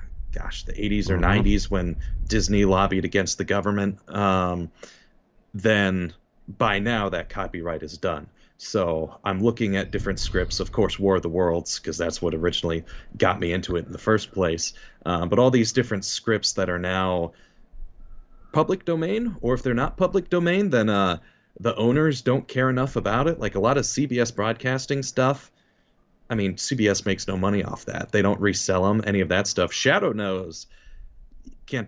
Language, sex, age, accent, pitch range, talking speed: English, male, 30-49, American, 90-110 Hz, 180 wpm